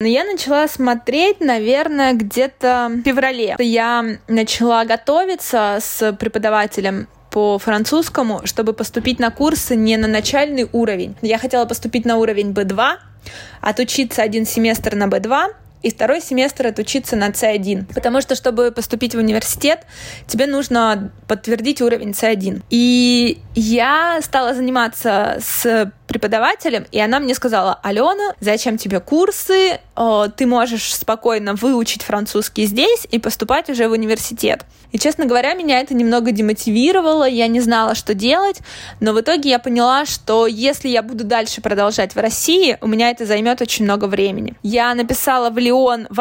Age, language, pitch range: 20-39, Russian, 220-260 Hz